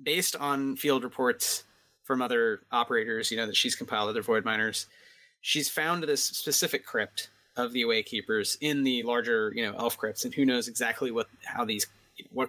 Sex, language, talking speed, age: male, English, 185 wpm, 30-49